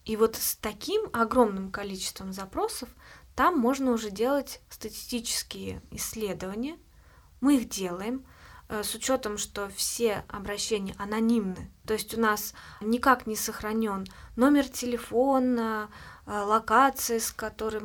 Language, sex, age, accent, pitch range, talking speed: Russian, female, 20-39, native, 205-250 Hz, 115 wpm